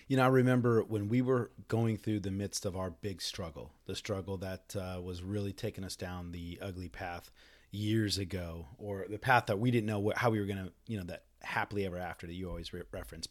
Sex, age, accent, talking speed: male, 30-49, American, 230 wpm